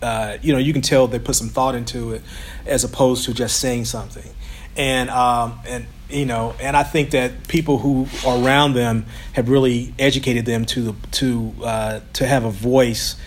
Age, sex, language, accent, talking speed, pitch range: 40-59, male, English, American, 195 wpm, 115-135 Hz